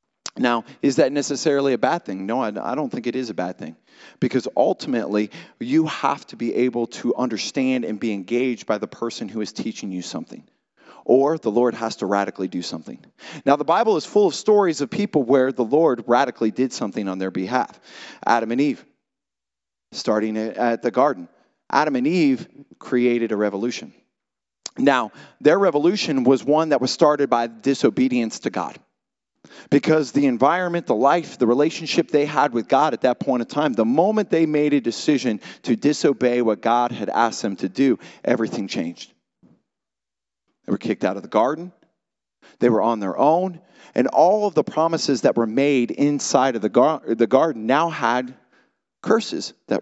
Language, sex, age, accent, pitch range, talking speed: English, male, 30-49, American, 115-150 Hz, 180 wpm